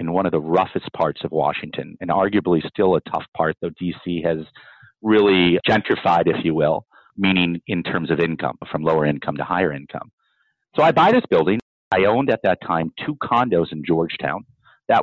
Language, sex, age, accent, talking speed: English, male, 40-59, American, 190 wpm